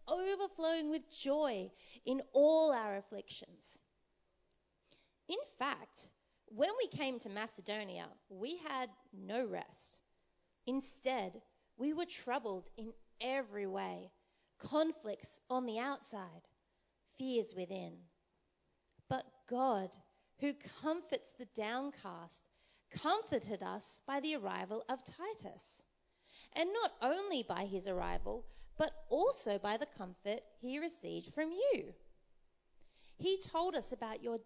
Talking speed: 110 wpm